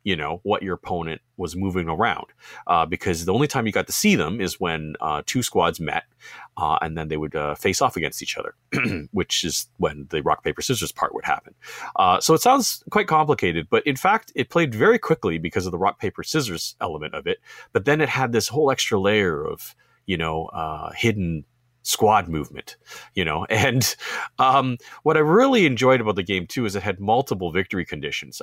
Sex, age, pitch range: male, 40-59, 85-120 Hz